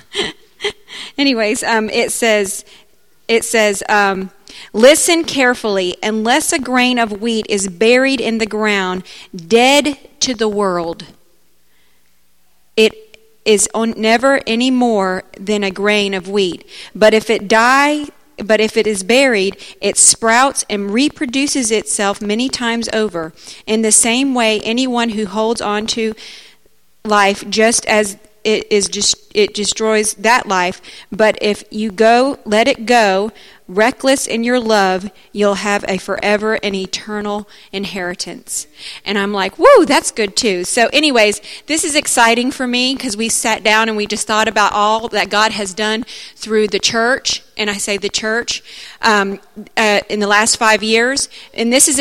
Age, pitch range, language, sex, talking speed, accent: 40-59, 205-235 Hz, English, female, 155 wpm, American